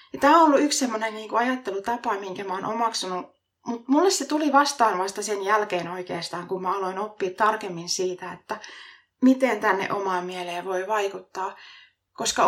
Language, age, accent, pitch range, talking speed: Finnish, 20-39, native, 190-260 Hz, 155 wpm